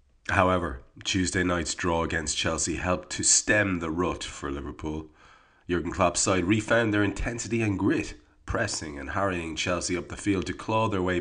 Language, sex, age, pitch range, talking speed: English, male, 30-49, 80-100 Hz, 170 wpm